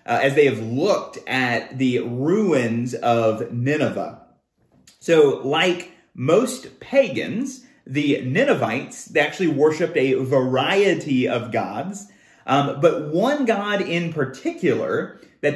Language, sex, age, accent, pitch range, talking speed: English, male, 30-49, American, 130-180 Hz, 115 wpm